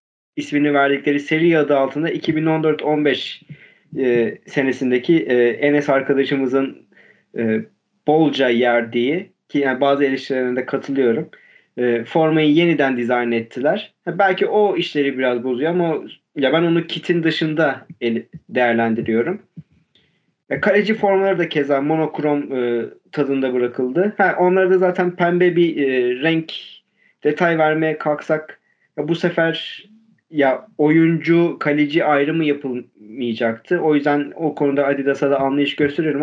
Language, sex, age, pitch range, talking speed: Turkish, male, 40-59, 130-165 Hz, 120 wpm